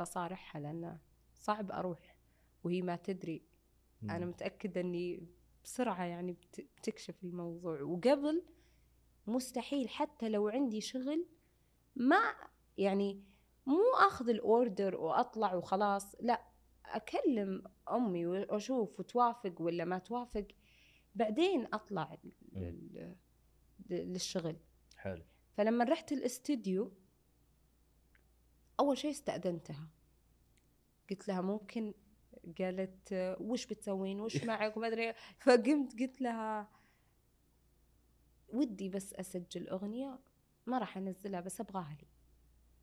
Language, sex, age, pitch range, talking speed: Arabic, female, 20-39, 175-240 Hz, 95 wpm